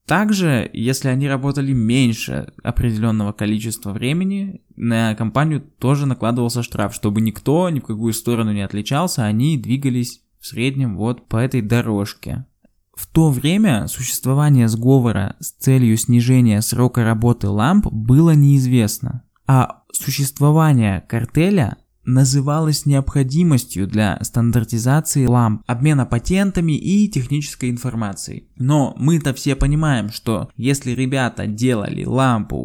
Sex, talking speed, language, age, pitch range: male, 120 wpm, Russian, 20-39, 115-150 Hz